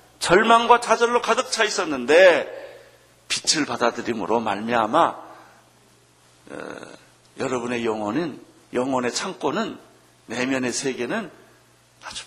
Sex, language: male, Korean